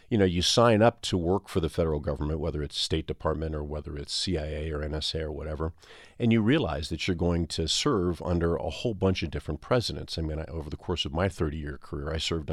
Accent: American